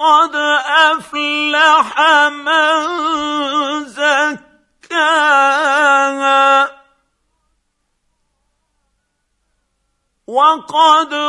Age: 50-69